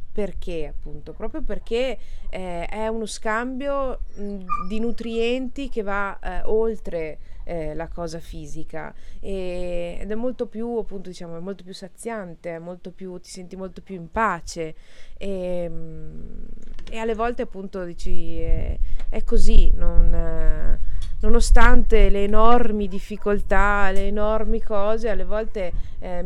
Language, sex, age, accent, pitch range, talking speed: Italian, female, 20-39, native, 170-215 Hz, 135 wpm